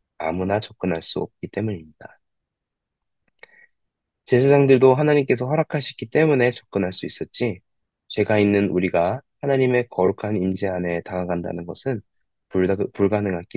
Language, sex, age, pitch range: Korean, male, 20-39, 95-125 Hz